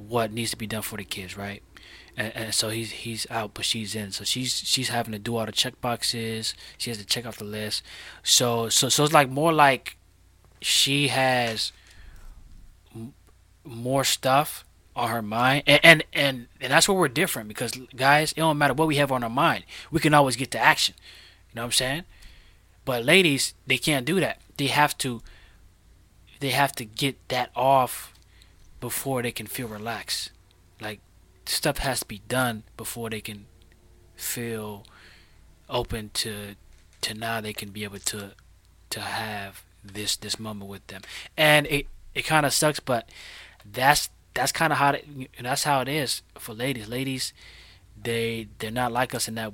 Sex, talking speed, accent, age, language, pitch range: male, 185 wpm, American, 20-39, English, 95-130 Hz